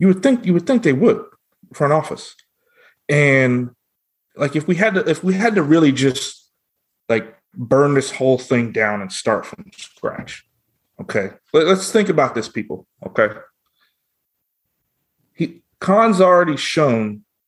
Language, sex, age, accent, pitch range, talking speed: English, male, 30-49, American, 125-170 Hz, 150 wpm